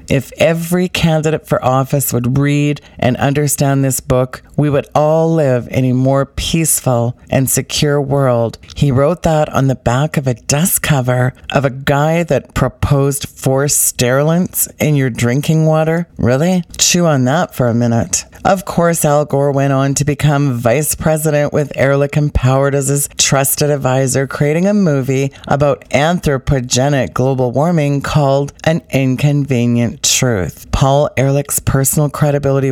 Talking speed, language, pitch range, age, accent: 150 wpm, English, 130-155 Hz, 40-59, American